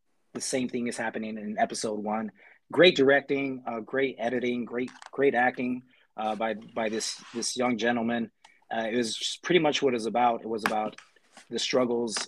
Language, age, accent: English, 20-39, American